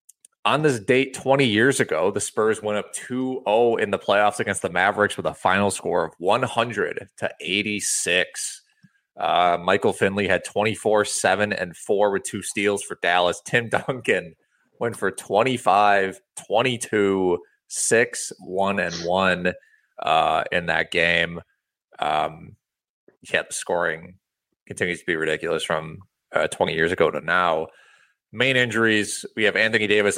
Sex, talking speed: male, 145 wpm